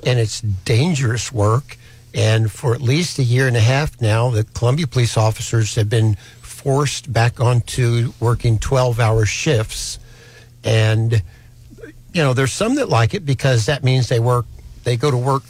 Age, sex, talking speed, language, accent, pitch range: 60-79, male, 165 wpm, English, American, 115-135 Hz